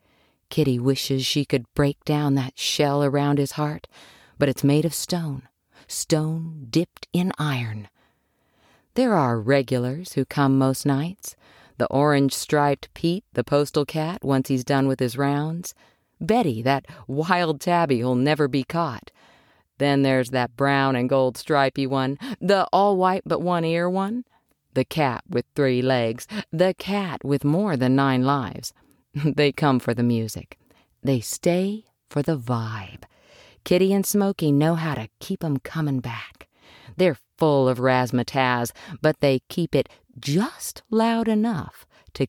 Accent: American